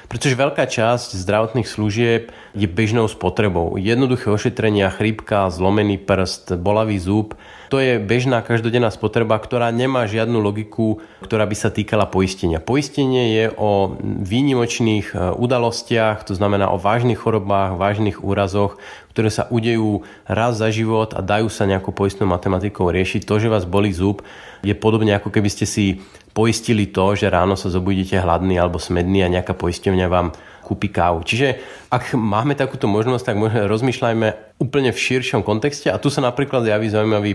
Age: 30-49